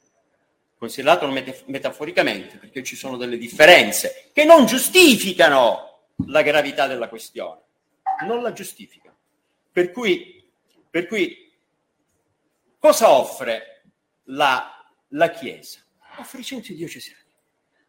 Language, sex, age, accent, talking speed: Italian, male, 50-69, native, 105 wpm